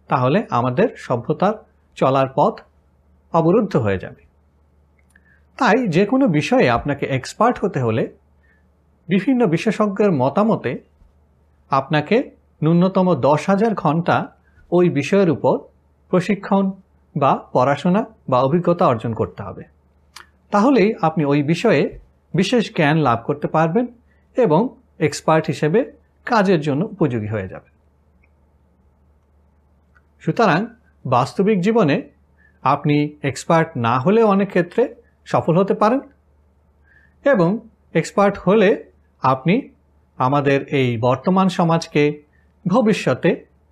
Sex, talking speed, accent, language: male, 100 wpm, native, Bengali